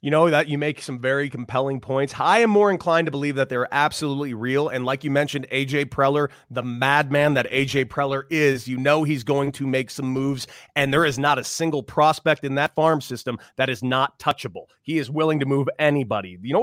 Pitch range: 130-170 Hz